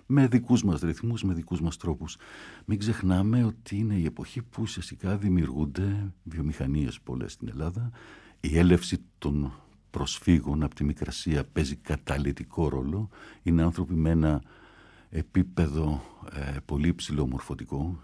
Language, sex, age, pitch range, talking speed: Greek, male, 60-79, 80-110 Hz, 130 wpm